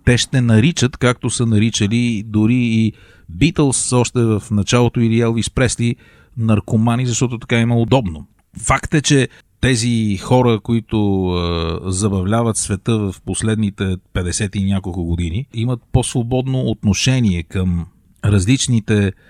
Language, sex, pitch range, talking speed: Bulgarian, male, 95-120 Hz, 120 wpm